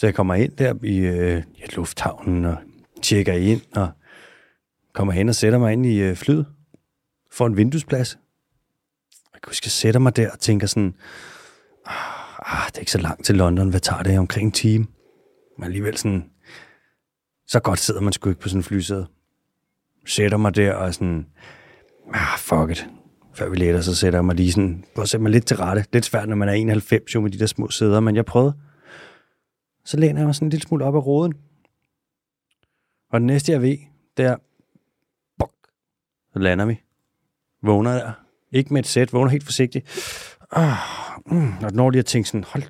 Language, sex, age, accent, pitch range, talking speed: Danish, male, 30-49, native, 95-130 Hz, 195 wpm